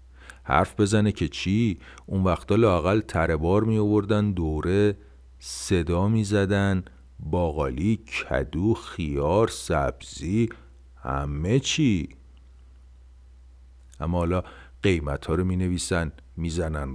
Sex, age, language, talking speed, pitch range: male, 50-69, Persian, 105 wpm, 65-100 Hz